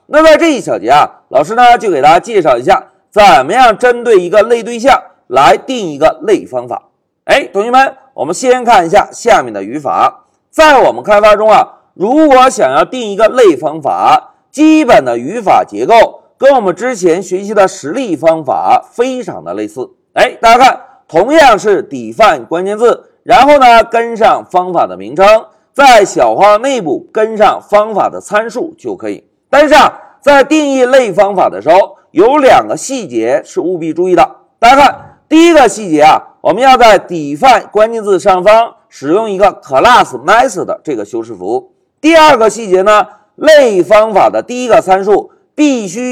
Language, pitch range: Chinese, 225-360 Hz